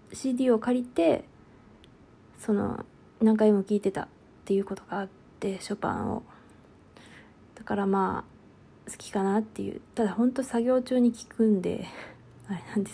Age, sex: 20-39, female